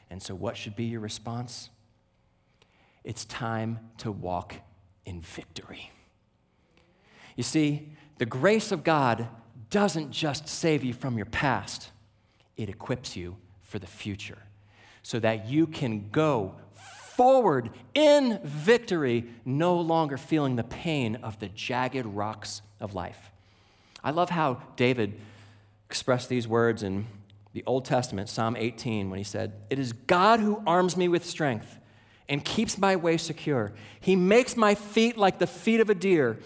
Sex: male